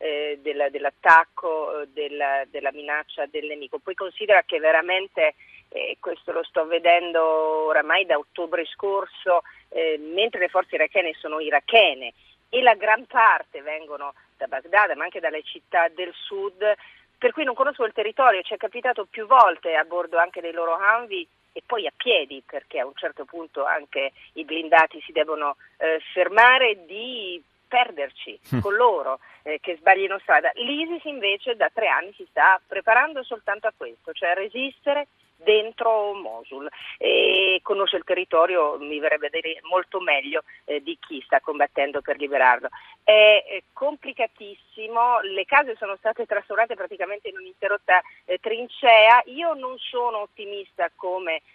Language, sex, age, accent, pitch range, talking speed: Italian, female, 40-59, native, 160-235 Hz, 150 wpm